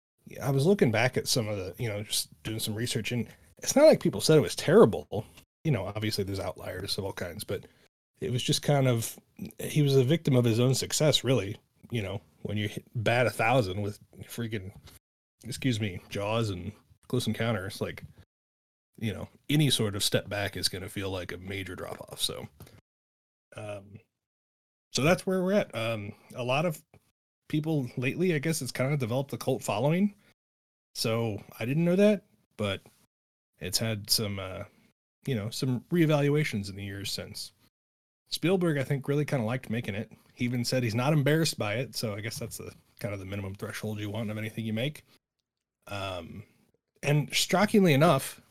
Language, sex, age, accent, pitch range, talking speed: English, male, 30-49, American, 105-140 Hz, 195 wpm